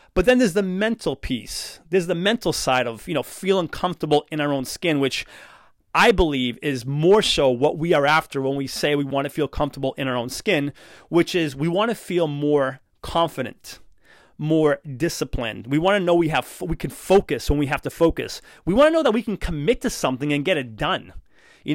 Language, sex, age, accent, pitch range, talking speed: English, male, 30-49, American, 150-200 Hz, 220 wpm